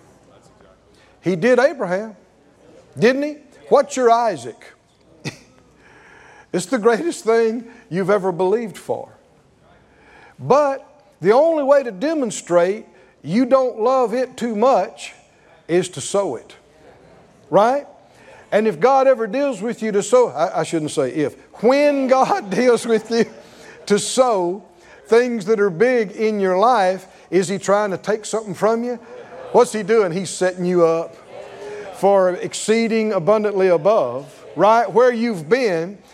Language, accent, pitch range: English, American, 185-245 Hz